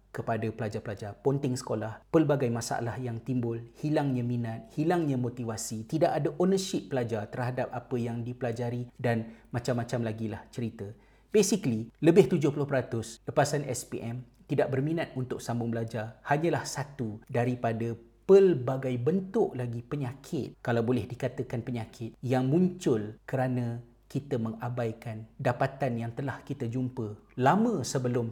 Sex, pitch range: male, 115-135 Hz